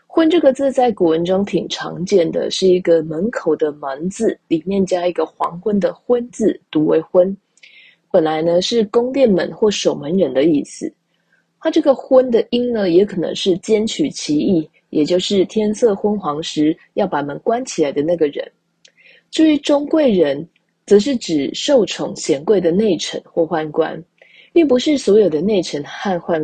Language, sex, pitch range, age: Chinese, female, 165-235 Hz, 20-39